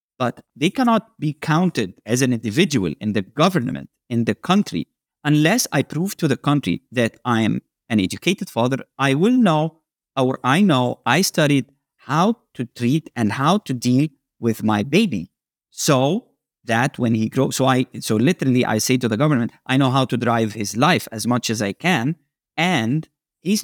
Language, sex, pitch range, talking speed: English, male, 125-190 Hz, 185 wpm